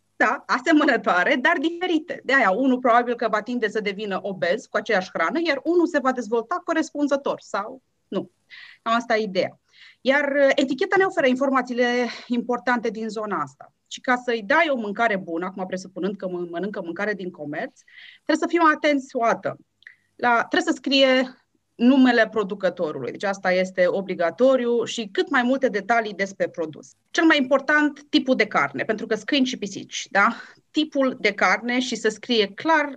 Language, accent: Romanian, native